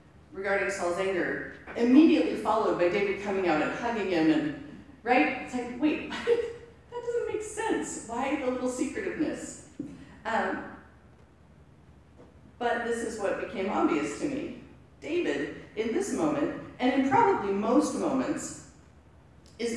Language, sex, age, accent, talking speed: English, female, 40-59, American, 135 wpm